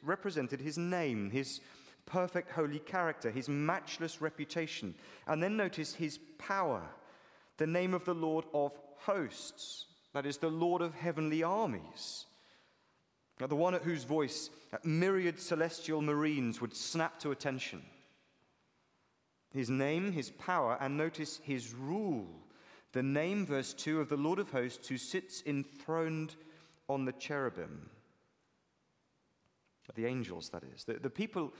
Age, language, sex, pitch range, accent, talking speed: 30-49, English, male, 140-175 Hz, British, 135 wpm